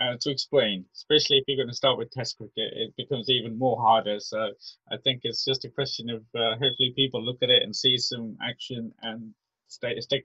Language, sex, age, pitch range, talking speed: English, male, 20-39, 105-135 Hz, 220 wpm